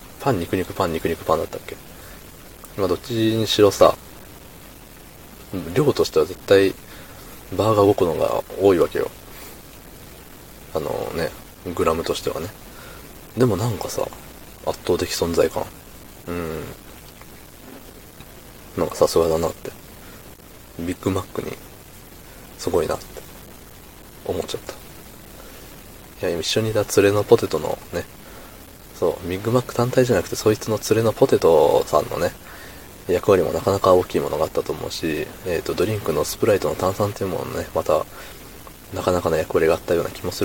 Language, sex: Japanese, male